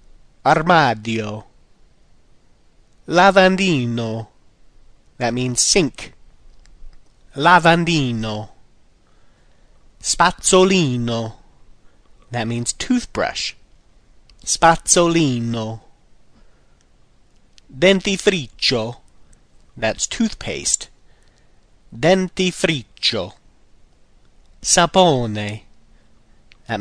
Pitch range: 110-180 Hz